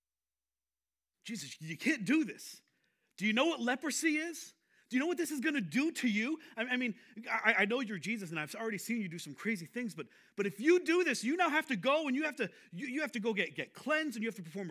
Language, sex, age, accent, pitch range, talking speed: English, male, 40-59, American, 170-255 Hz, 260 wpm